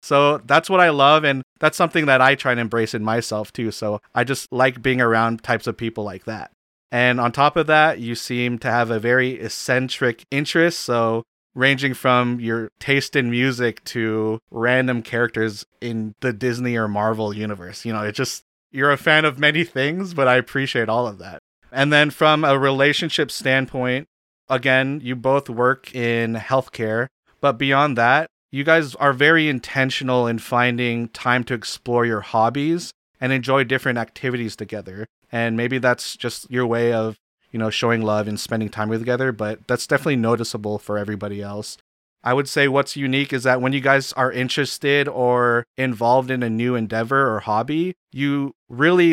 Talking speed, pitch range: 180 wpm, 115-135 Hz